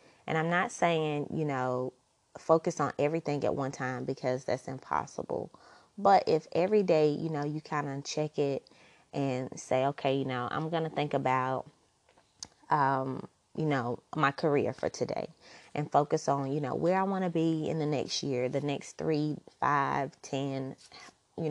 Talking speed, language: 175 wpm, English